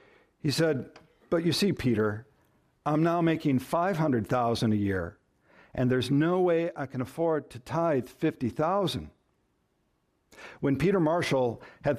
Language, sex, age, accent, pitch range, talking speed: English, male, 60-79, American, 135-180 Hz, 130 wpm